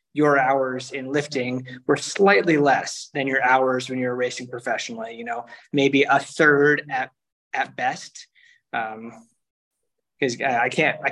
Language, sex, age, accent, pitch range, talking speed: English, male, 20-39, American, 135-160 Hz, 150 wpm